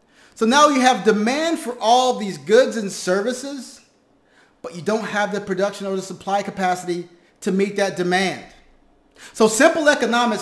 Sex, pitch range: male, 180-235 Hz